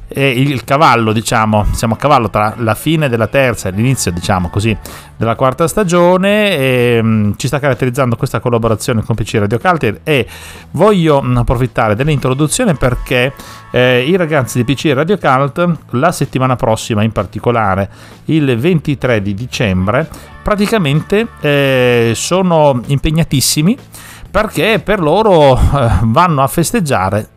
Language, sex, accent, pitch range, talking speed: Italian, male, native, 110-145 Hz, 135 wpm